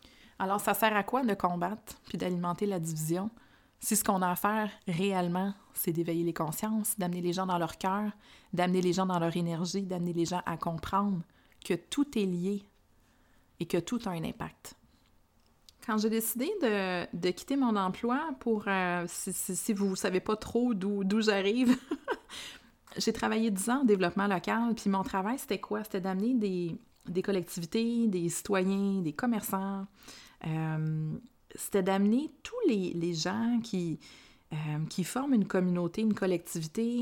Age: 30-49